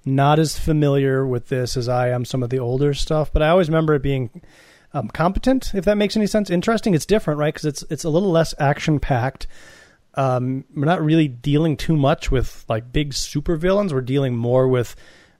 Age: 30-49